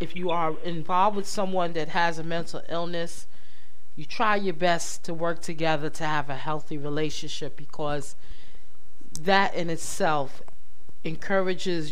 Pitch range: 150-190 Hz